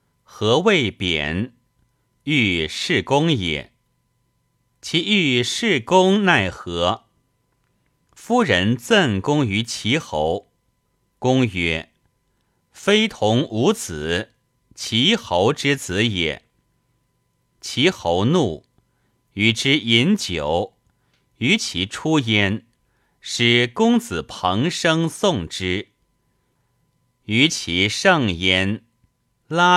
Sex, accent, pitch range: male, native, 95-135 Hz